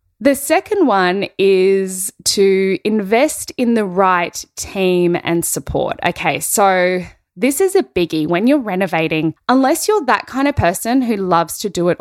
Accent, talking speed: Australian, 160 wpm